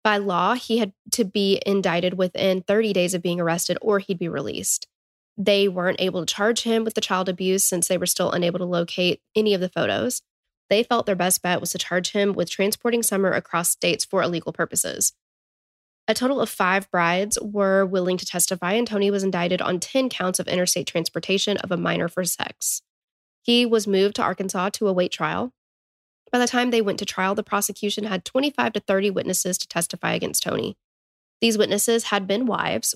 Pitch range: 185-215 Hz